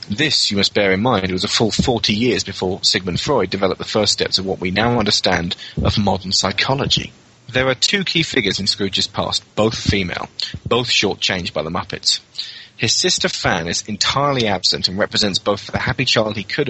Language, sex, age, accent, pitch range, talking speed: English, male, 30-49, British, 95-115 Hz, 200 wpm